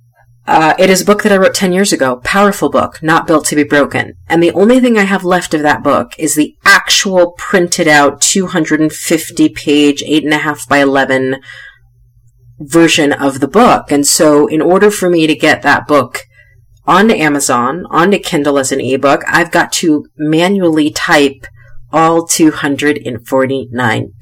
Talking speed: 170 wpm